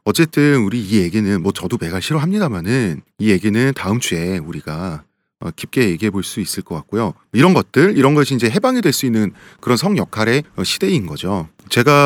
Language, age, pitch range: English, 30-49, 100-145 Hz